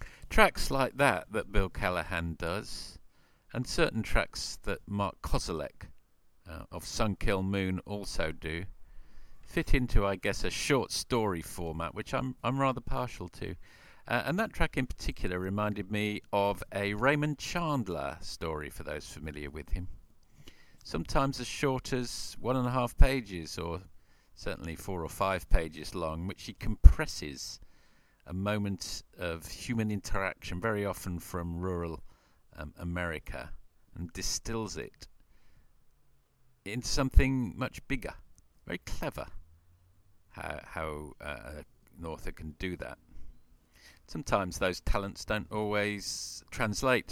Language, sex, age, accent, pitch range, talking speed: English, male, 50-69, British, 85-110 Hz, 130 wpm